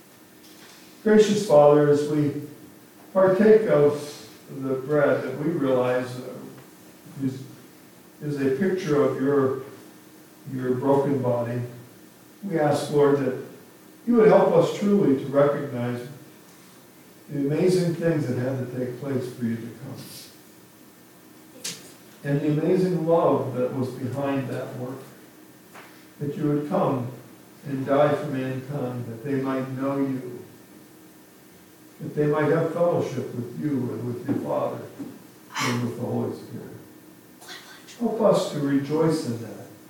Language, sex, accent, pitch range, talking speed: English, male, American, 125-155 Hz, 130 wpm